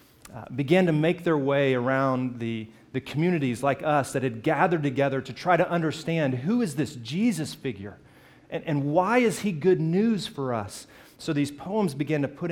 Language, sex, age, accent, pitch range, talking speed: English, male, 30-49, American, 125-170 Hz, 190 wpm